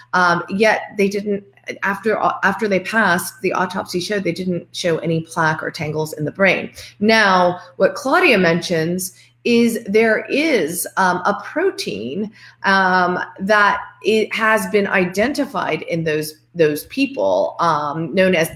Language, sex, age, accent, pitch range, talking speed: English, female, 30-49, American, 170-215 Hz, 140 wpm